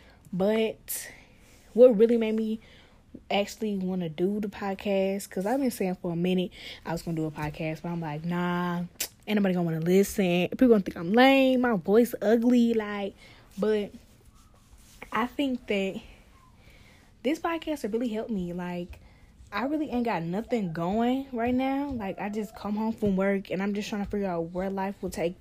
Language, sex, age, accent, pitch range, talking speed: English, female, 10-29, American, 180-230 Hz, 195 wpm